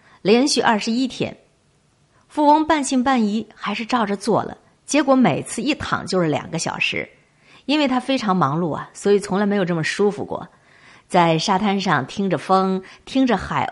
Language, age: Chinese, 50-69